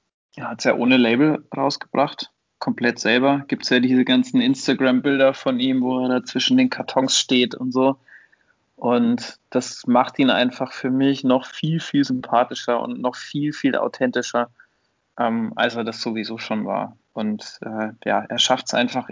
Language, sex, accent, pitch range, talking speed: German, male, German, 115-130 Hz, 175 wpm